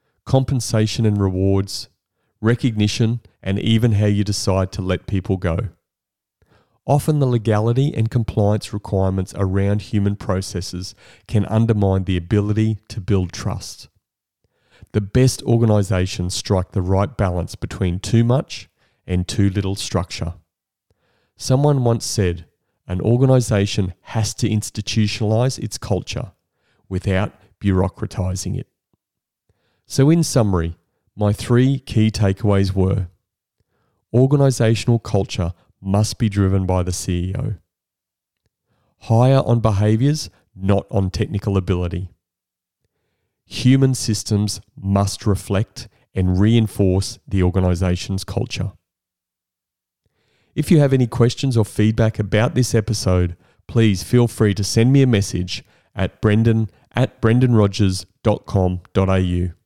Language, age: English, 40-59